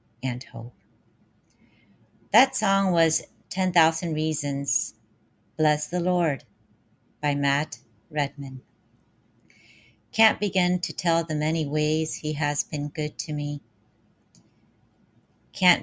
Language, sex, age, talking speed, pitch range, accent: English, female, 40-59, 100 wpm, 115-160 Hz, American